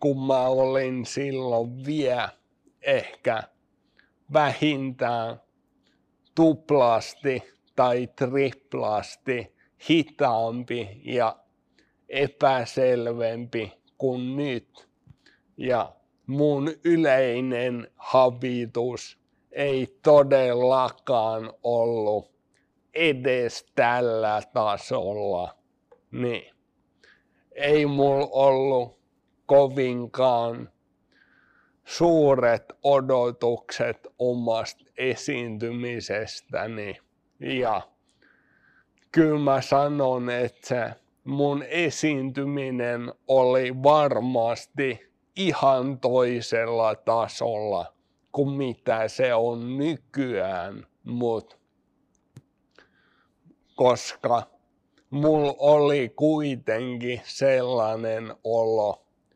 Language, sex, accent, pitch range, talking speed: Finnish, male, native, 115-140 Hz, 60 wpm